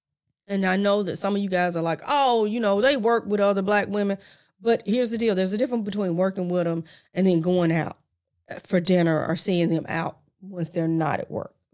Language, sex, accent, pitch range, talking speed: English, female, American, 175-240 Hz, 230 wpm